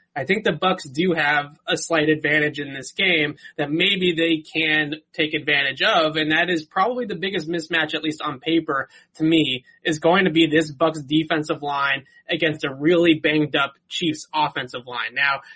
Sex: male